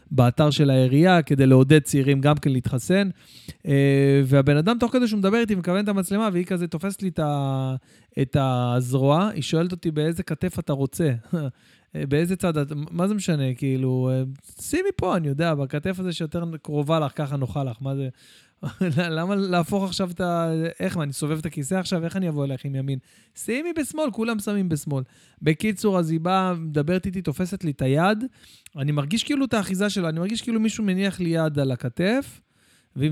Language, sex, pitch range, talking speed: Hebrew, male, 135-190 Hz, 185 wpm